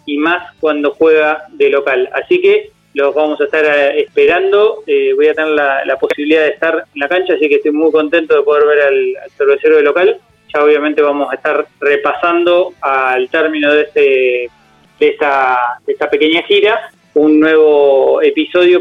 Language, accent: Spanish, Argentinian